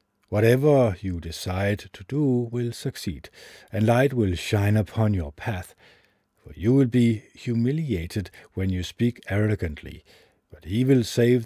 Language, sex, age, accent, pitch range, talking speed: English, male, 50-69, Danish, 90-120 Hz, 140 wpm